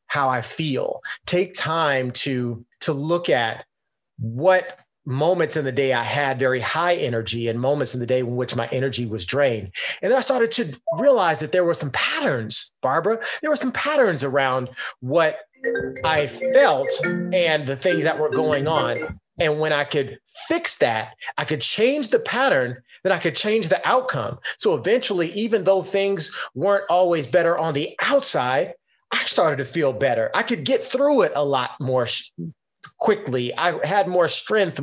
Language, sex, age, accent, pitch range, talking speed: English, male, 30-49, American, 130-200 Hz, 175 wpm